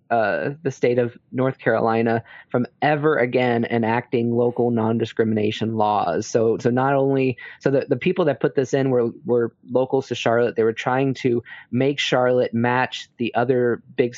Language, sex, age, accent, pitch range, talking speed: English, male, 20-39, American, 115-125 Hz, 170 wpm